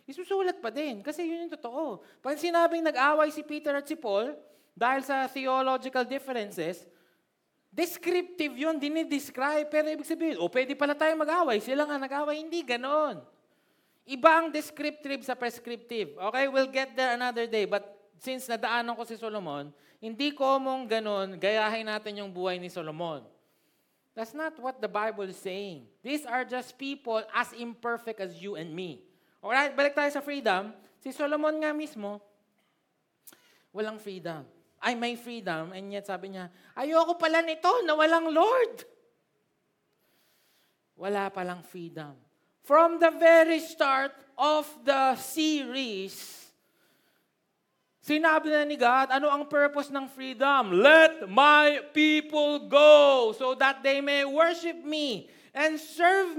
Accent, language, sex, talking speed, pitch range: native, Filipino, male, 145 wpm, 215-305 Hz